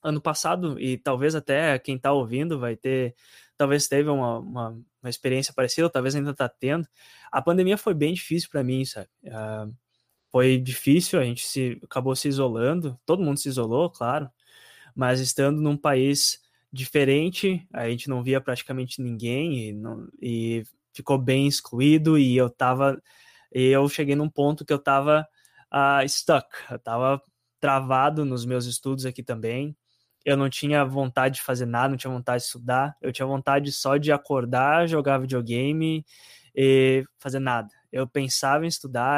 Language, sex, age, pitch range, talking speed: Portuguese, male, 20-39, 125-145 Hz, 165 wpm